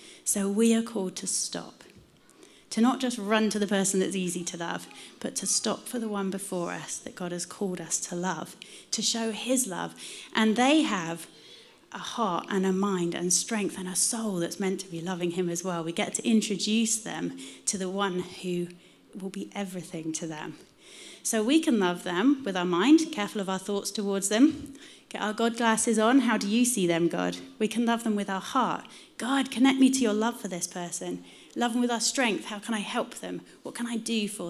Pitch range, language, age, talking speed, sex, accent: 175-230 Hz, English, 30-49, 220 wpm, female, British